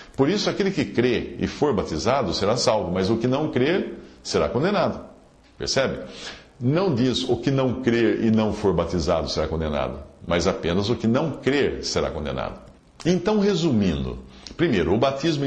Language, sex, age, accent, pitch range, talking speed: English, male, 50-69, Brazilian, 95-125 Hz, 165 wpm